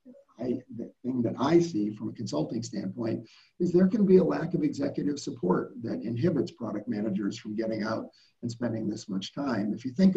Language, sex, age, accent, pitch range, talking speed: English, male, 40-59, American, 115-150 Hz, 195 wpm